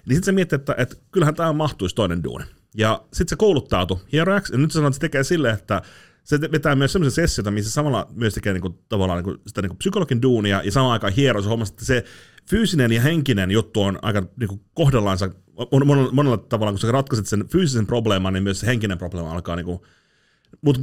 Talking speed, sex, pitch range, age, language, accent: 200 wpm, male, 95-140 Hz, 30-49, Finnish, native